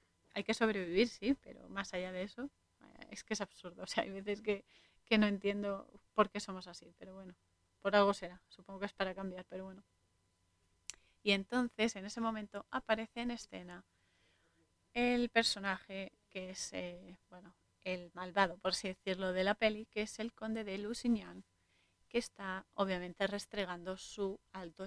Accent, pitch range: Spanish, 185-220 Hz